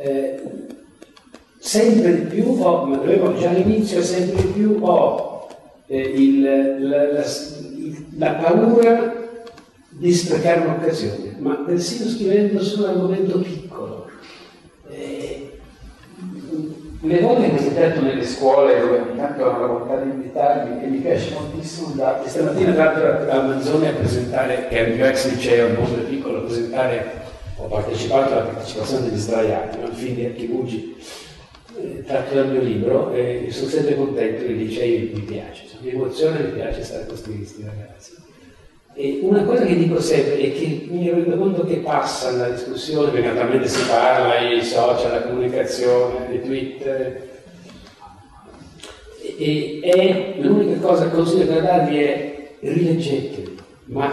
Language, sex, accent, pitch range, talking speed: Italian, male, native, 125-180 Hz, 150 wpm